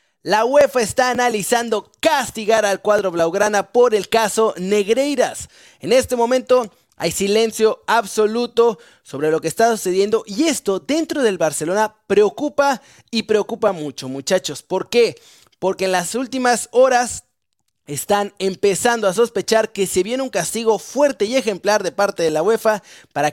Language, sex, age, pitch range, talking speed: Spanish, male, 30-49, 195-250 Hz, 150 wpm